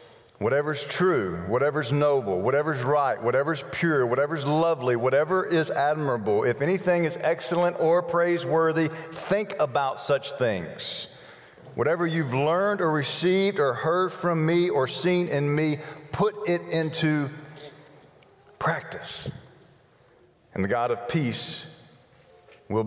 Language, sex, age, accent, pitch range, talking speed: English, male, 50-69, American, 115-160 Hz, 120 wpm